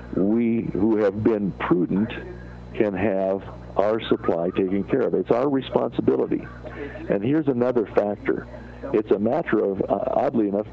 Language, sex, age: English, male, 50-69